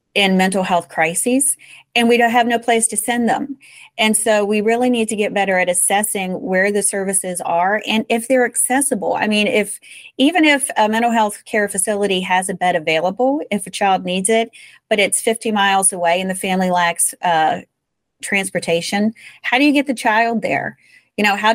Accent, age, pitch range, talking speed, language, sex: American, 40-59, 185-235 Hz, 200 wpm, English, female